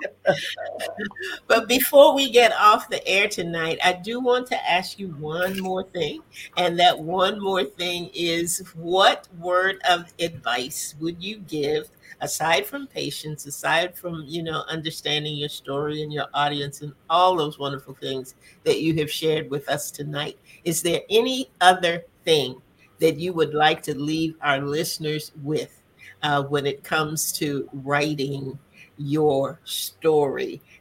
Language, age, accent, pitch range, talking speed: English, 50-69, American, 145-175 Hz, 150 wpm